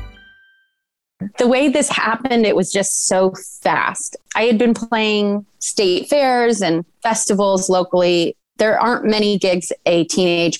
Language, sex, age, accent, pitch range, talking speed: English, female, 30-49, American, 170-225 Hz, 135 wpm